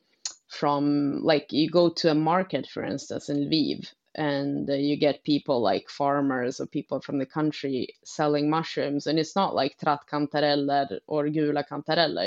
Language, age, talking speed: English, 20-39, 165 wpm